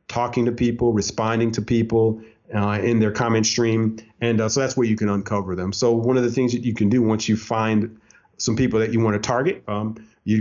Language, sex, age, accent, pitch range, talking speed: English, male, 40-59, American, 100-120 Hz, 230 wpm